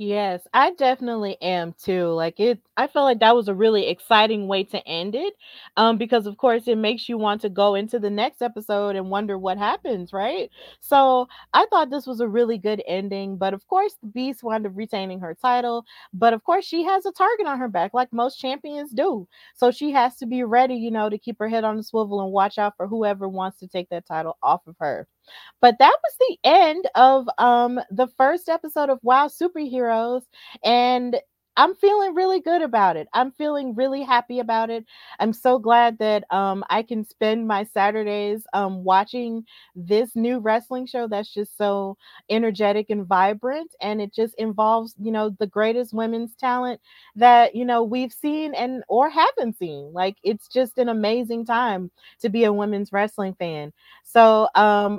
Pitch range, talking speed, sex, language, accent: 205-255 Hz, 195 wpm, female, English, American